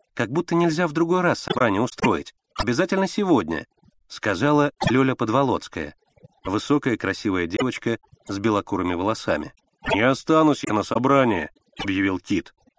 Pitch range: 130-175 Hz